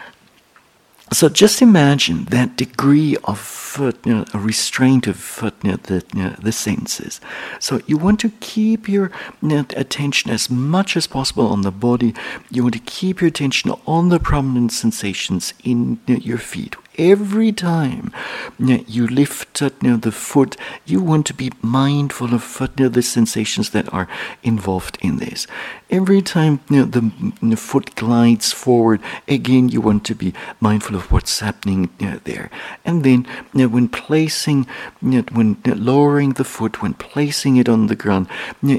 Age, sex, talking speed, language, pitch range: 60-79, male, 160 wpm, English, 110-145 Hz